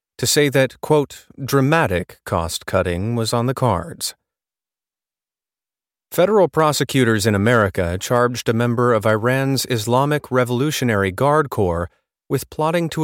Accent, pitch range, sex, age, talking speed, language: American, 95-130 Hz, male, 30-49, 120 wpm, English